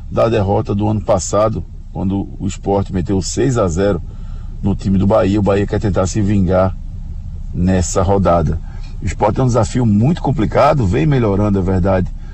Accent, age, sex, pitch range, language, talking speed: Brazilian, 50-69, male, 95-110 Hz, Portuguese, 160 wpm